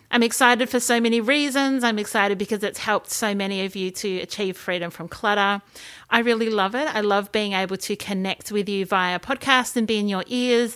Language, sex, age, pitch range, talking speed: English, female, 30-49, 190-245 Hz, 220 wpm